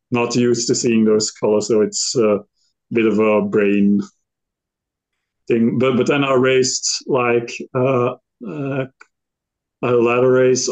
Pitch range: 105-120 Hz